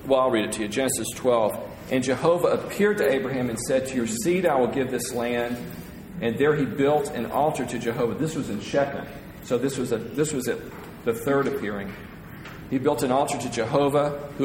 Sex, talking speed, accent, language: male, 210 wpm, American, English